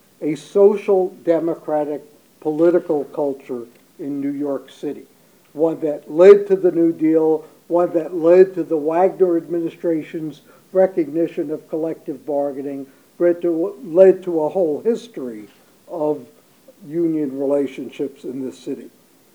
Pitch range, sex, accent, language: 150-185 Hz, male, American, English